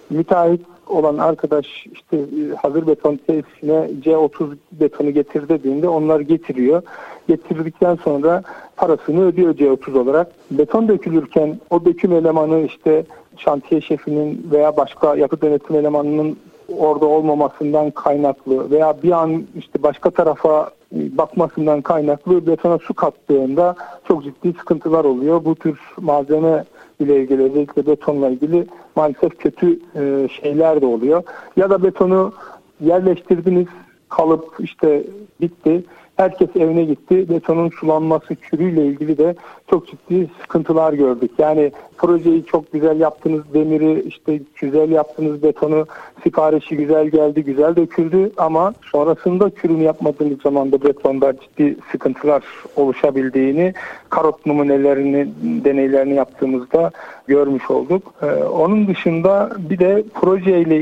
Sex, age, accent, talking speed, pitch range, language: male, 50-69, native, 120 wpm, 150-170 Hz, Turkish